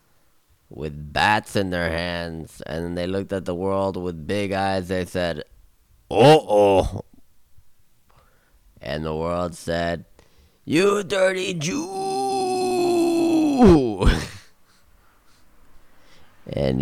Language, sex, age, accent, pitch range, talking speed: English, male, 30-49, American, 80-105 Hz, 90 wpm